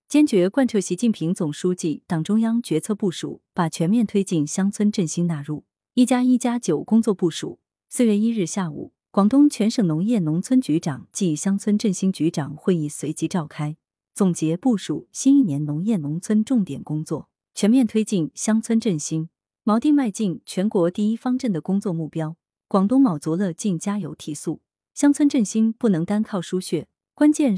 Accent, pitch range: native, 165-230 Hz